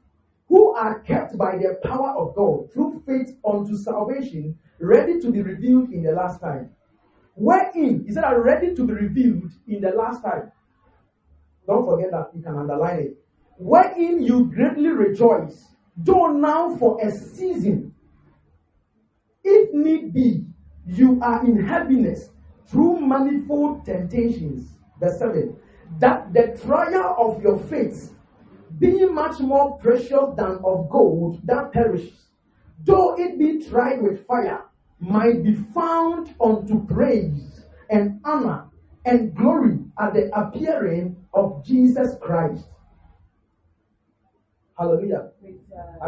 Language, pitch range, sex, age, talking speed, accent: English, 165-265 Hz, male, 40-59, 125 wpm, Nigerian